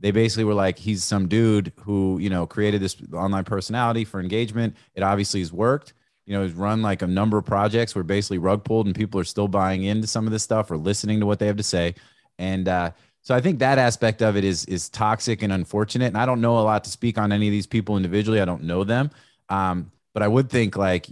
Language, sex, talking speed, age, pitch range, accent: English, male, 255 wpm, 30-49, 95-110 Hz, American